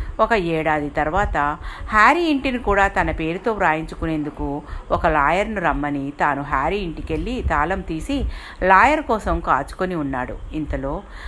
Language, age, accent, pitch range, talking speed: Telugu, 60-79, native, 155-225 Hz, 115 wpm